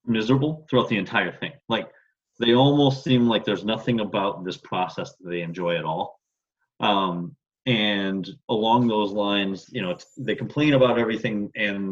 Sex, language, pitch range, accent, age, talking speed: male, English, 100-130 Hz, American, 30-49, 165 wpm